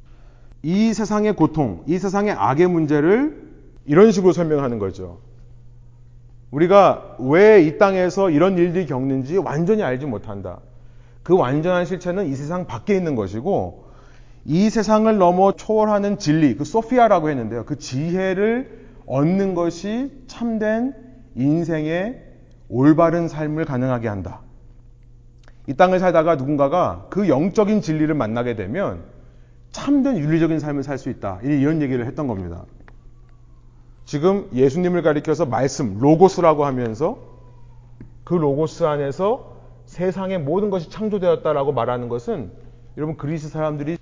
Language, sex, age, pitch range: Korean, male, 30-49, 120-180 Hz